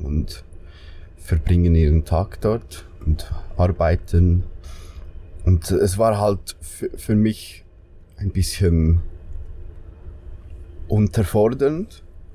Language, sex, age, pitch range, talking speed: German, male, 20-39, 85-95 Hz, 85 wpm